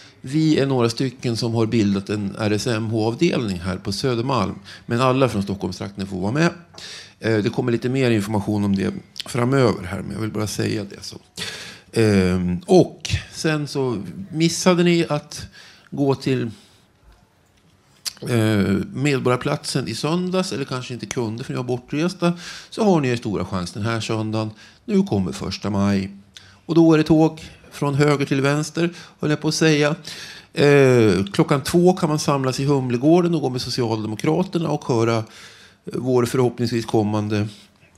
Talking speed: 160 wpm